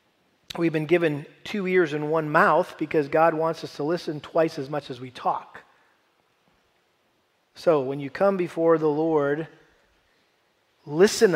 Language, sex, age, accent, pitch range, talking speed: English, male, 40-59, American, 155-200 Hz, 150 wpm